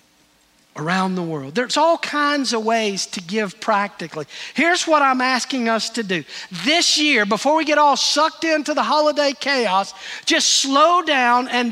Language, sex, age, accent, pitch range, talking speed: English, male, 50-69, American, 210-275 Hz, 170 wpm